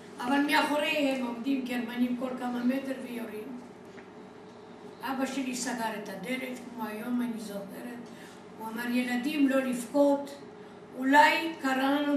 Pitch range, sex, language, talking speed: 220-290 Hz, female, Hebrew, 120 wpm